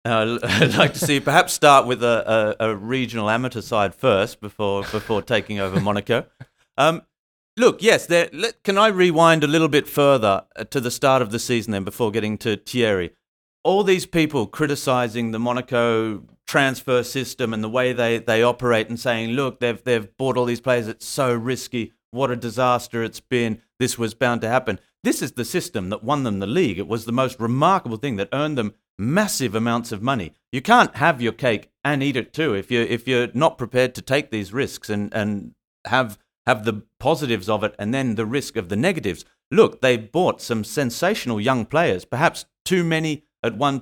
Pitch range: 110-140 Hz